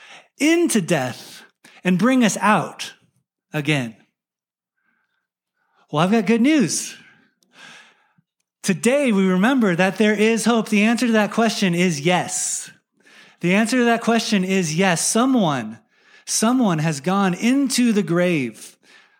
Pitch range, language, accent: 165-225 Hz, English, American